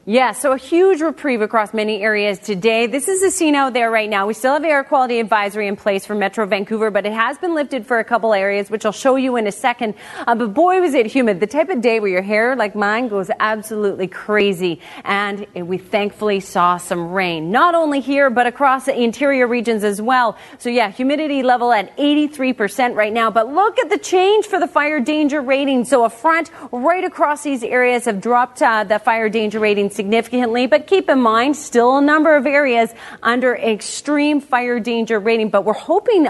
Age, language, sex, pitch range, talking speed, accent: 30-49, English, female, 215-275 Hz, 210 wpm, American